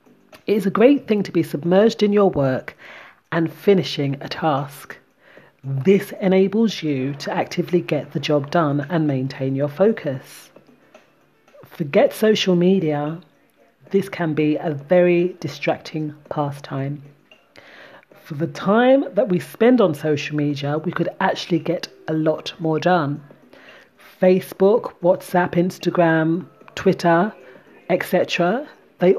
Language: English